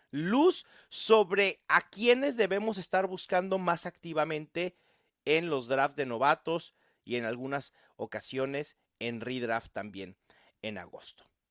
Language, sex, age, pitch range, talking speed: English, male, 40-59, 165-230 Hz, 120 wpm